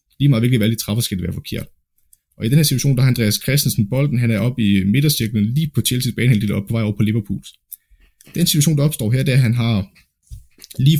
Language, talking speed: Danish, 250 wpm